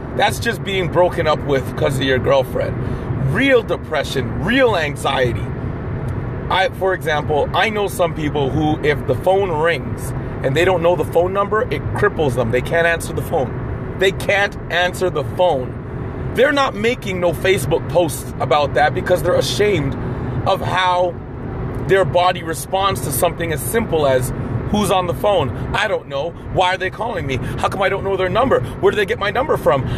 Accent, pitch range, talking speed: American, 130-185 Hz, 185 wpm